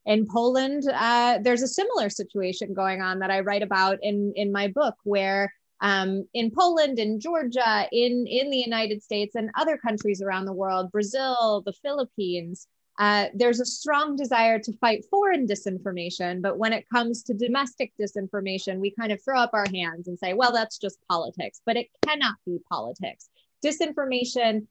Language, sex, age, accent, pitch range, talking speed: Polish, female, 20-39, American, 195-250 Hz, 175 wpm